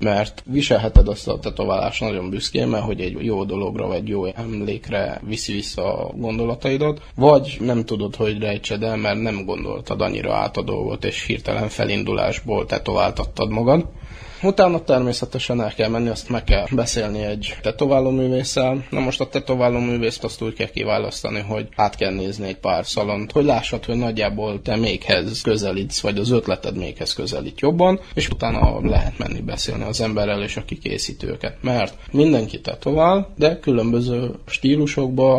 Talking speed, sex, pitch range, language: 155 wpm, male, 105-130 Hz, Hungarian